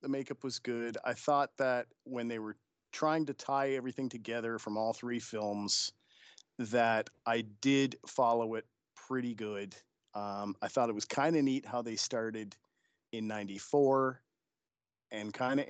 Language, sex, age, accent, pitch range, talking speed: English, male, 40-59, American, 110-135 Hz, 160 wpm